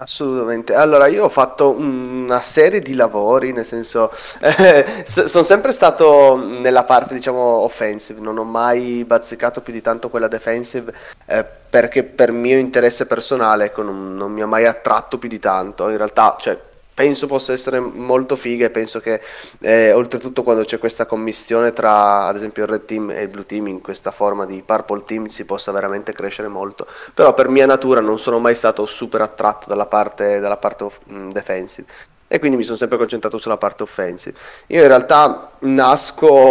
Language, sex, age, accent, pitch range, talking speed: Italian, male, 20-39, native, 110-130 Hz, 180 wpm